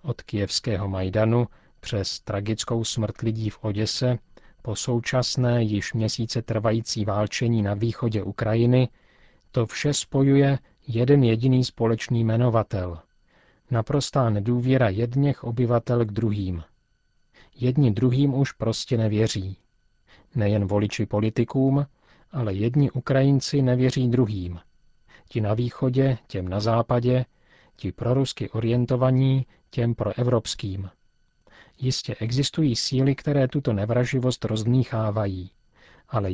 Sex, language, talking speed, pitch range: male, Czech, 105 wpm, 110-130 Hz